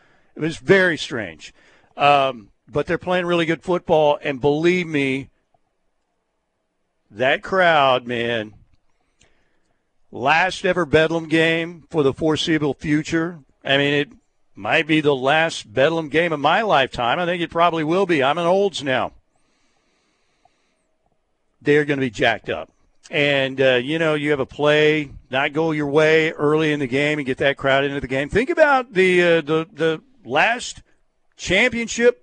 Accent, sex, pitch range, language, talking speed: American, male, 140-175 Hz, English, 155 wpm